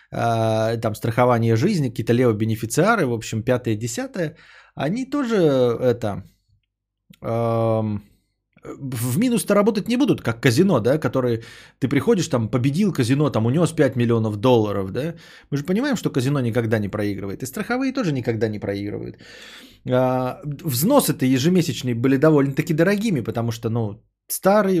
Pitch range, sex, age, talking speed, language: 115-160 Hz, male, 20-39, 140 wpm, Bulgarian